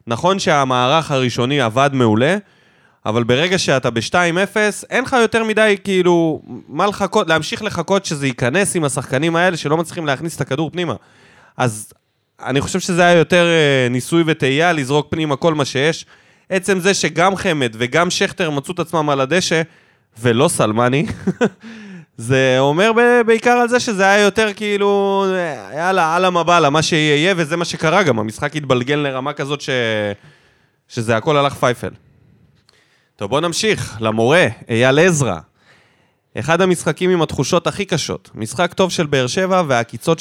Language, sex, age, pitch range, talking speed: Hebrew, male, 20-39, 130-185 Hz, 155 wpm